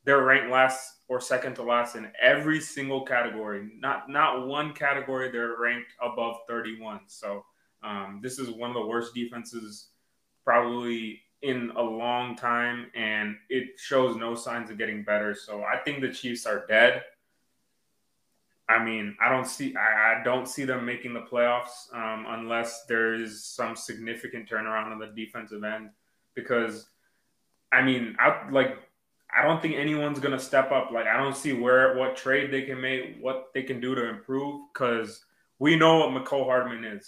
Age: 20-39